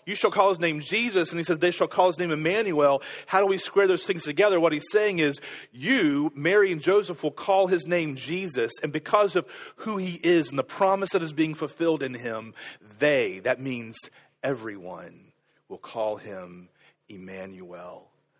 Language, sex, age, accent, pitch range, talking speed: English, male, 40-59, American, 130-185 Hz, 190 wpm